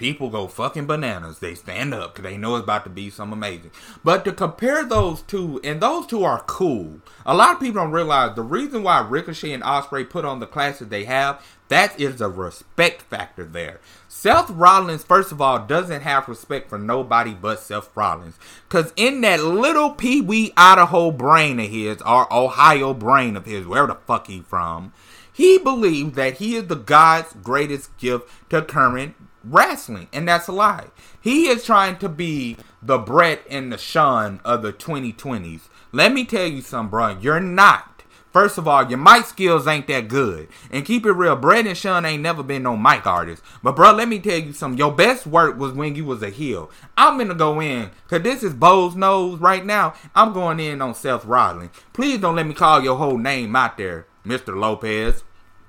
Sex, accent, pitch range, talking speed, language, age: male, American, 110-180 Hz, 200 wpm, English, 30-49